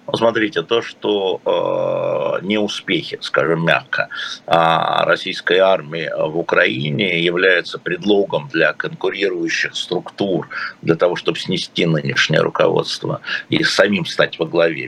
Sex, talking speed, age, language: male, 115 wpm, 50-69, Russian